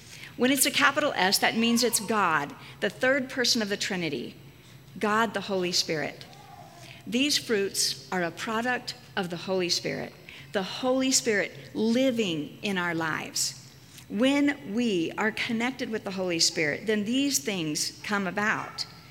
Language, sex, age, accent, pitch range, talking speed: English, female, 50-69, American, 170-235 Hz, 150 wpm